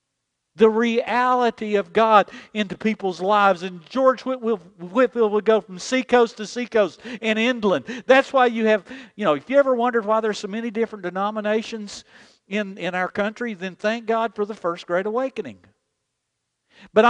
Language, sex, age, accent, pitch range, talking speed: English, male, 50-69, American, 195-235 Hz, 165 wpm